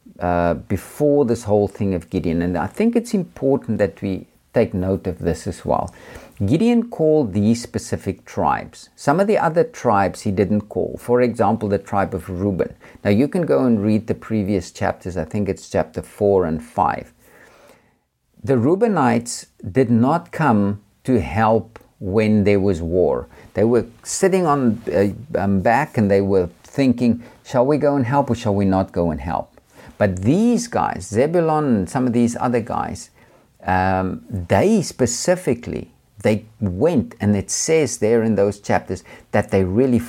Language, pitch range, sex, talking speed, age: English, 95-120 Hz, male, 170 wpm, 50-69